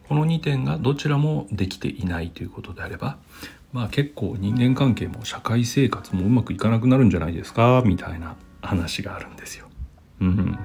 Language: Japanese